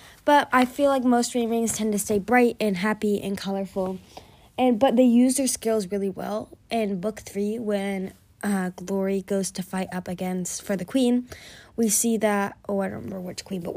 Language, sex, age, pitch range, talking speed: English, female, 20-39, 185-230 Hz, 205 wpm